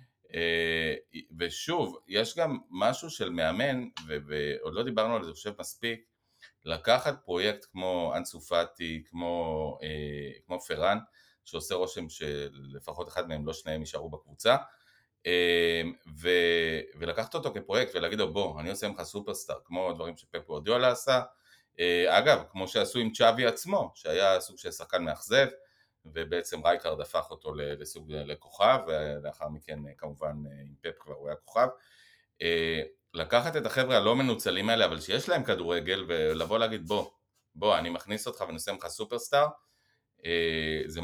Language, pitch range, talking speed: Hebrew, 80-120 Hz, 150 wpm